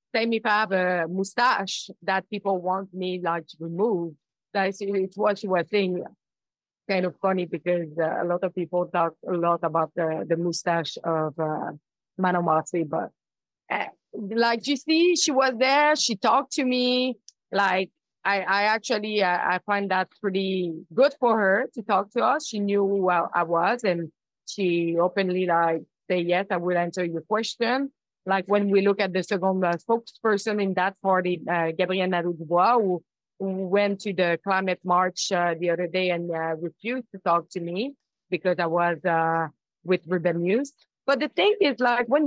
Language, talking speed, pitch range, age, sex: English, 185 wpm, 175-220 Hz, 30-49, female